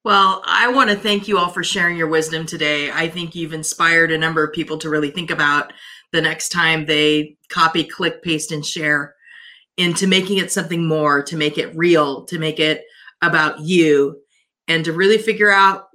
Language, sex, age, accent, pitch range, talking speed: English, female, 30-49, American, 160-220 Hz, 195 wpm